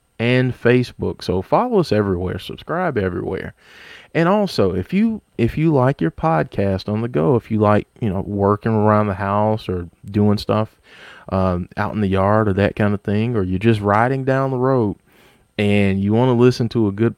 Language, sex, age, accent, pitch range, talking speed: English, male, 30-49, American, 95-120 Hz, 200 wpm